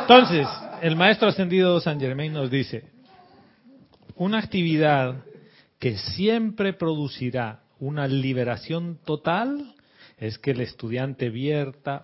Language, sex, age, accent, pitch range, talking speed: Spanish, male, 40-59, Mexican, 110-155 Hz, 105 wpm